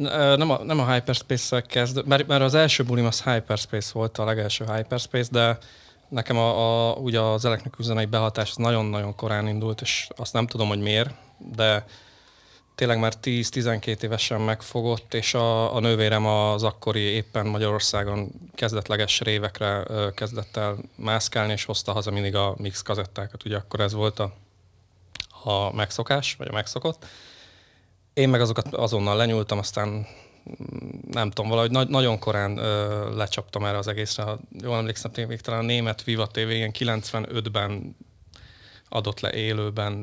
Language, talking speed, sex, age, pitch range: Hungarian, 150 wpm, male, 20-39, 105-115 Hz